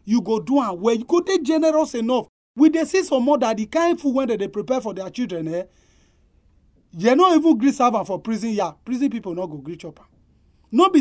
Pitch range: 185-280 Hz